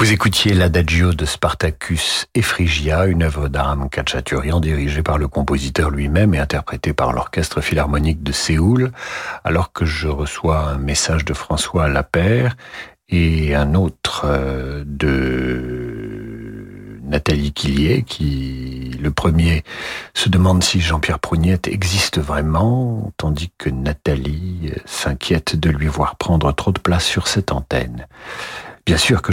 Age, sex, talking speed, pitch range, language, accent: 50-69, male, 130 wpm, 75-95 Hz, French, French